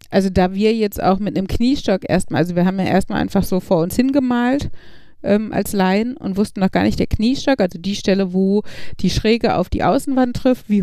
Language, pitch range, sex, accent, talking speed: German, 185-225 Hz, female, German, 220 wpm